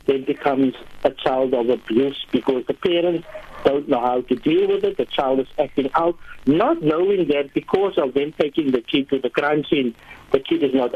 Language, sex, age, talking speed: English, male, 50-69, 210 wpm